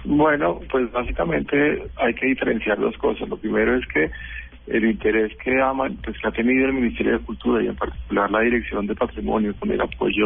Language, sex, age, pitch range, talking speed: Spanish, male, 40-59, 105-125 Hz, 200 wpm